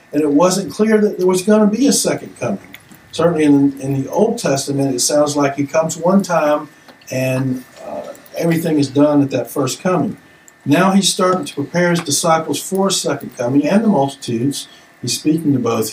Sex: male